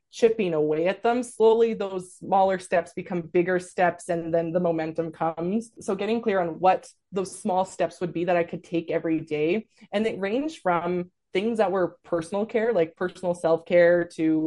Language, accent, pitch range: English, American, 165-195 Hz